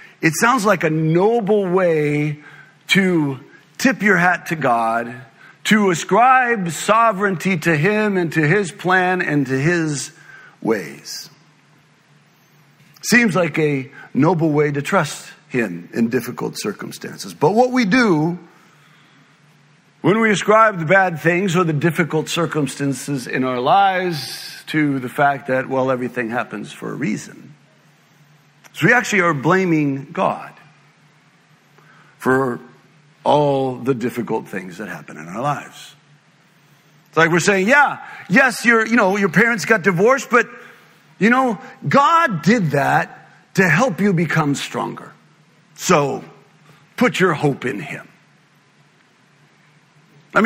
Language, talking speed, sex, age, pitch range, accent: English, 130 wpm, male, 50-69, 150-200 Hz, American